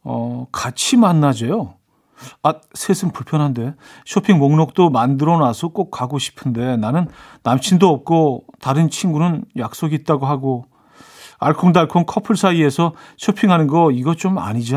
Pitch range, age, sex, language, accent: 130-190 Hz, 40-59, male, Korean, native